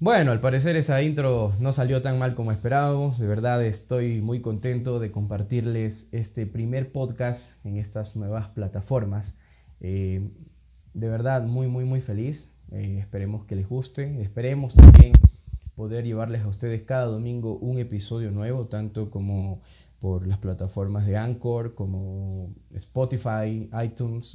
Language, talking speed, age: Spanish, 145 wpm, 10-29